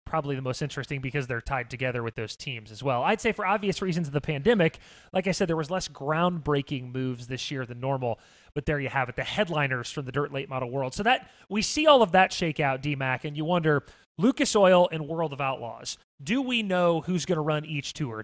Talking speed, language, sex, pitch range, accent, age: 245 wpm, English, male, 140-195 Hz, American, 30-49